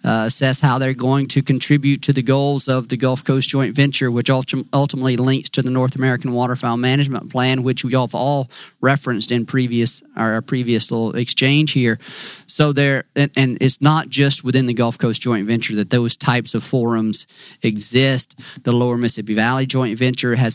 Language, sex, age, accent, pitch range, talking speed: English, male, 40-59, American, 115-140 Hz, 190 wpm